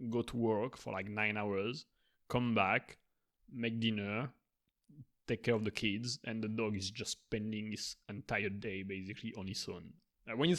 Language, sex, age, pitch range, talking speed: English, male, 20-39, 105-120 Hz, 175 wpm